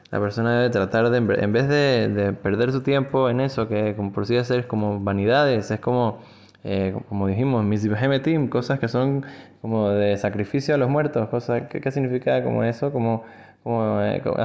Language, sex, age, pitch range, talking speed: Spanish, male, 20-39, 105-130 Hz, 190 wpm